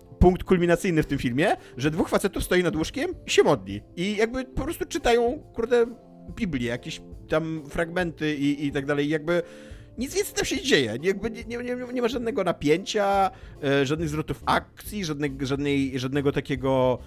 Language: Polish